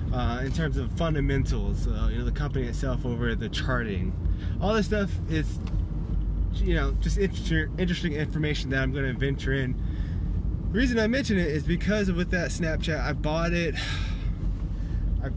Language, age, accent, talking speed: English, 20-39, American, 170 wpm